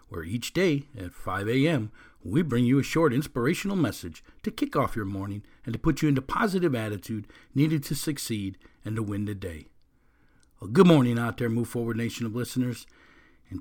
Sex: male